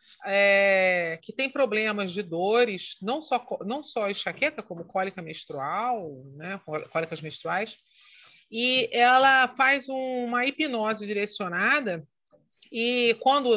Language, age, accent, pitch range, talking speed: Portuguese, 40-59, Brazilian, 175-240 Hz, 115 wpm